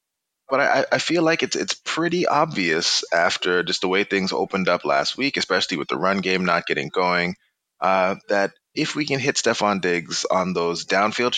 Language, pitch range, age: English, 90-115 Hz, 20-39